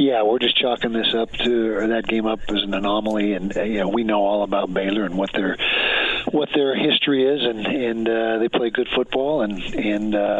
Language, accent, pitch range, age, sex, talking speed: English, American, 100-115 Hz, 50-69, male, 220 wpm